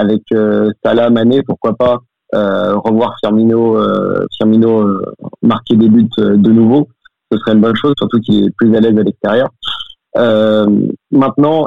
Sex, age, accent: male, 30-49, French